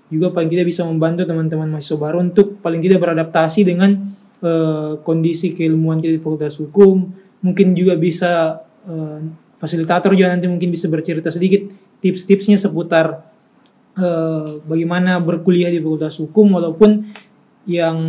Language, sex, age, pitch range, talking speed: Indonesian, male, 20-39, 165-195 Hz, 135 wpm